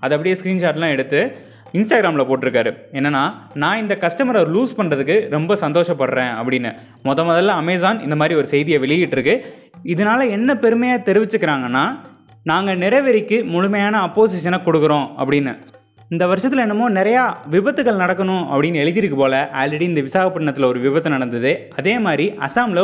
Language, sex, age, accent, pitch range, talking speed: Tamil, male, 20-39, native, 145-205 Hz, 130 wpm